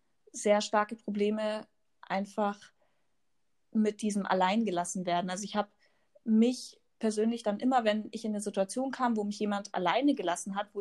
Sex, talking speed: female, 160 wpm